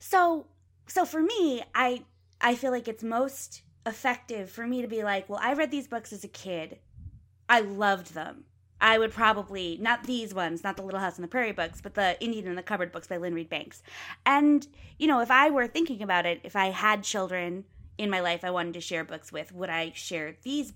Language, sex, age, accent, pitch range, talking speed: English, female, 20-39, American, 165-230 Hz, 225 wpm